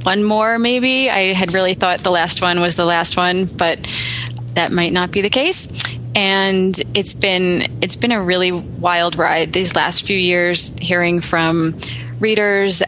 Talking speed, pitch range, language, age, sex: 170 wpm, 160-185 Hz, English, 20-39, female